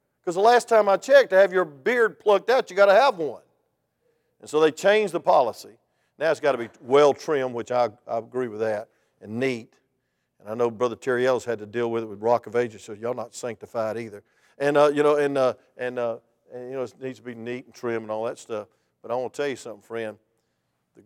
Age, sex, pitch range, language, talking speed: 50-69, male, 115-175 Hz, English, 250 wpm